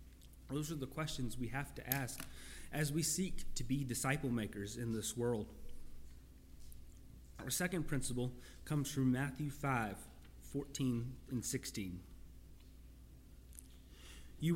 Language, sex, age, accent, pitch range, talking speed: English, male, 30-49, American, 100-155 Hz, 115 wpm